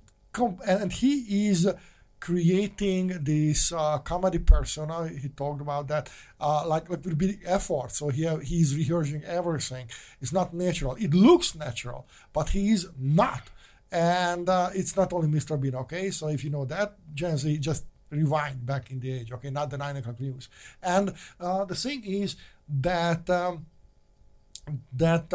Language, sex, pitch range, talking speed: English, male, 145-180 Hz, 165 wpm